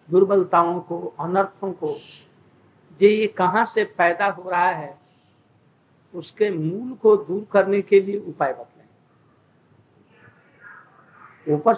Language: Hindi